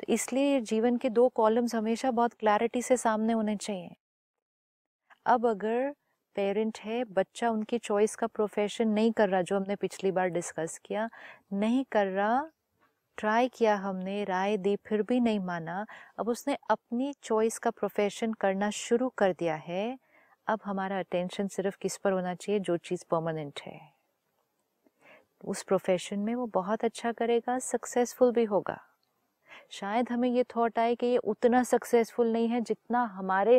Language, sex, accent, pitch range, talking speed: Hindi, female, native, 195-235 Hz, 155 wpm